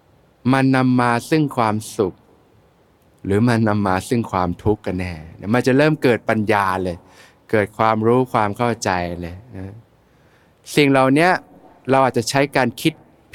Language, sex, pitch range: Thai, male, 105-135 Hz